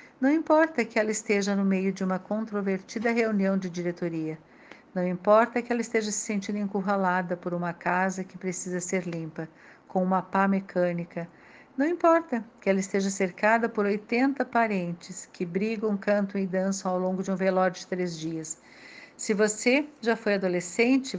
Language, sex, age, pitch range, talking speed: Portuguese, female, 50-69, 185-240 Hz, 165 wpm